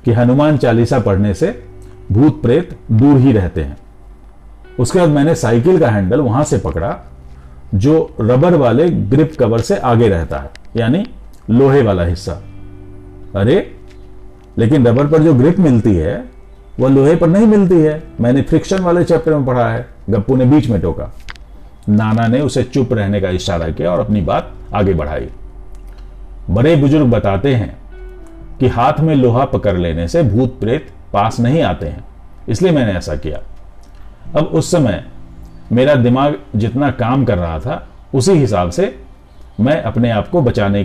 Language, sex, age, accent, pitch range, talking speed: Hindi, male, 50-69, native, 95-135 Hz, 165 wpm